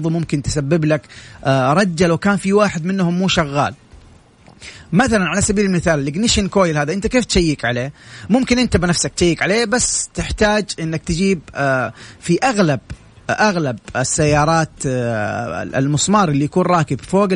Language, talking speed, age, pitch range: Arabic, 135 wpm, 30-49, 145-205 Hz